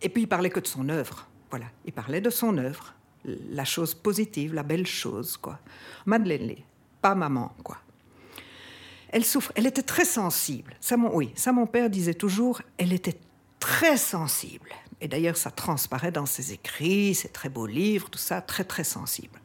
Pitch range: 150-210 Hz